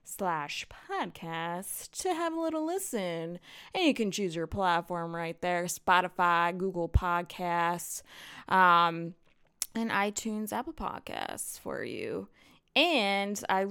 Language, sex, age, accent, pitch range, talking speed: English, female, 20-39, American, 170-235 Hz, 120 wpm